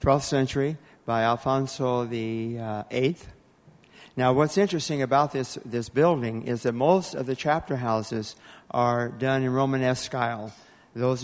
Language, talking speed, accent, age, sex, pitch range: English, 145 wpm, American, 50-69, male, 115-135 Hz